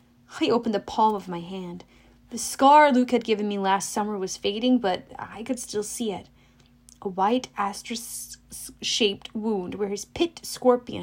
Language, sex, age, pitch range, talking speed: English, female, 30-49, 175-255 Hz, 170 wpm